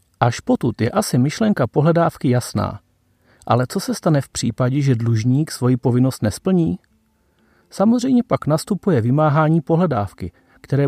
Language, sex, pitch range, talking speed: Czech, male, 120-175 Hz, 130 wpm